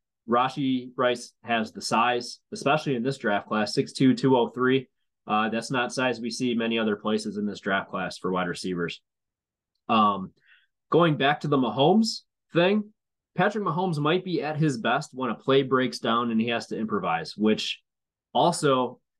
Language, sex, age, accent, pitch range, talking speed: English, male, 20-39, American, 115-140 Hz, 170 wpm